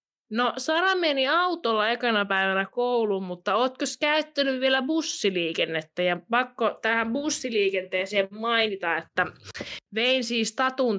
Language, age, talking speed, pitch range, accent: Finnish, 20-39, 115 wpm, 195-260 Hz, native